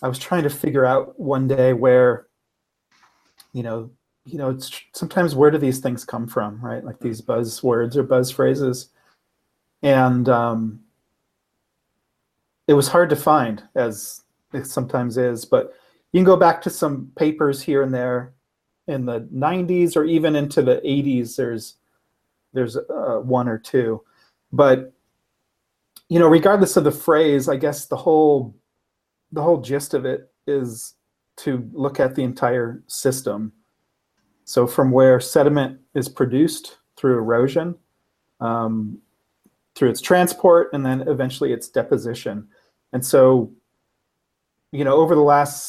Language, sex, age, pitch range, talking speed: English, male, 40-59, 125-150 Hz, 145 wpm